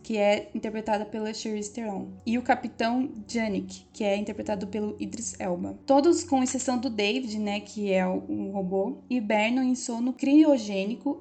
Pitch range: 210-255 Hz